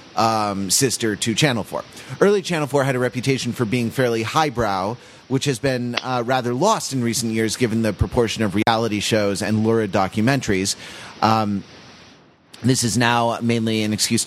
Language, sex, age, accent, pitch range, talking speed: English, male, 30-49, American, 105-130 Hz, 170 wpm